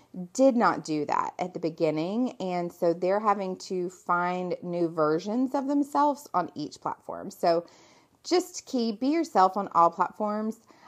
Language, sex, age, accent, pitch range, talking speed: English, female, 30-49, American, 175-250 Hz, 155 wpm